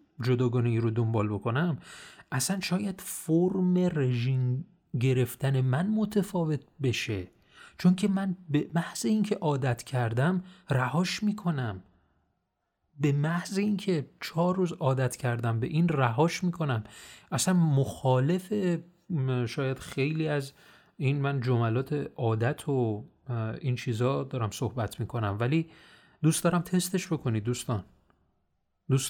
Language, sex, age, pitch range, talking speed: Persian, male, 30-49, 120-165 Hz, 115 wpm